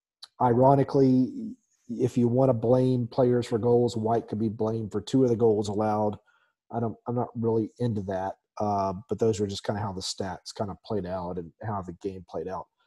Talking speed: 215 wpm